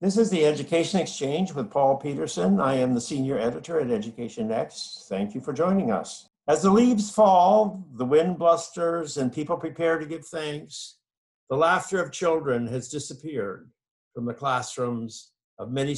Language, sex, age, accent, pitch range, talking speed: English, male, 60-79, American, 135-165 Hz, 170 wpm